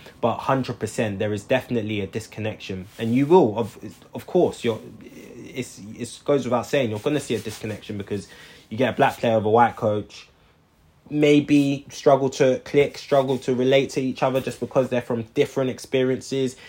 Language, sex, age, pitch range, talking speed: English, male, 20-39, 105-130 Hz, 185 wpm